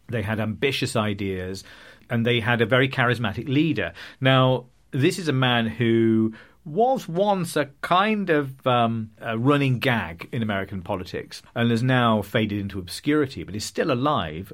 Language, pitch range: English, 105-130 Hz